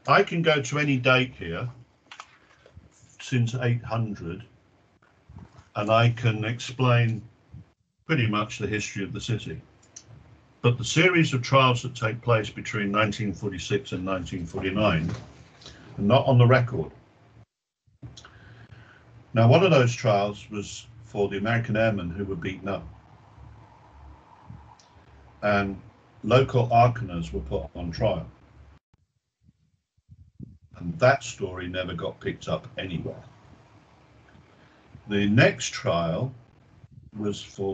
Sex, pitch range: male, 95-120 Hz